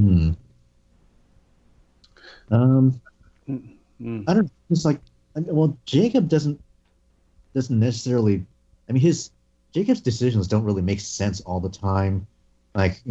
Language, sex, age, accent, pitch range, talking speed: English, male, 30-49, American, 85-110 Hz, 115 wpm